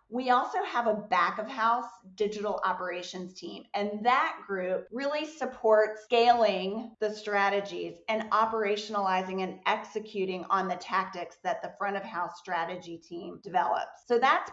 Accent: American